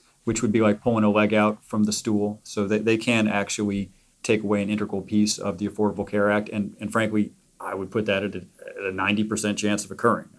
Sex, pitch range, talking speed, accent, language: male, 105-125 Hz, 235 wpm, American, English